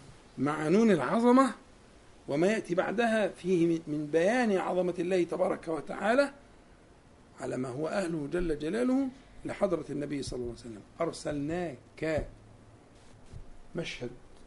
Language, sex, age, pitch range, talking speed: Arabic, male, 50-69, 145-215 Hz, 110 wpm